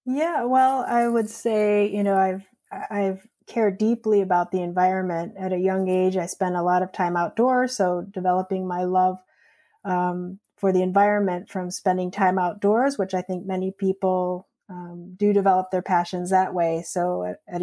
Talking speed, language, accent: 175 wpm, English, American